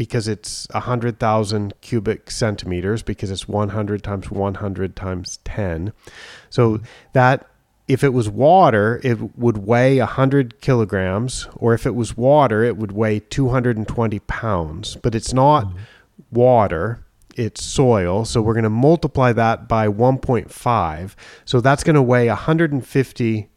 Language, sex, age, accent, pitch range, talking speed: English, male, 40-59, American, 110-135 Hz, 130 wpm